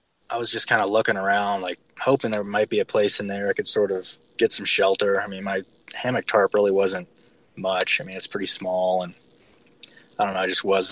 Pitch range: 100-130 Hz